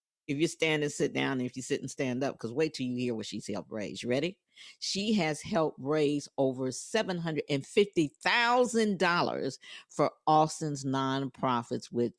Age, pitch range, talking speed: 50-69, 125-170 Hz, 180 wpm